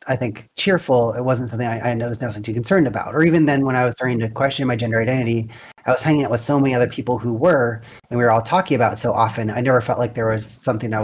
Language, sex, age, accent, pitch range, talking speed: English, male, 30-49, American, 115-135 Hz, 290 wpm